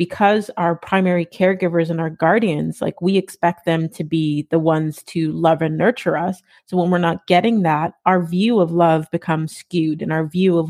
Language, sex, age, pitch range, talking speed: English, female, 30-49, 165-190 Hz, 200 wpm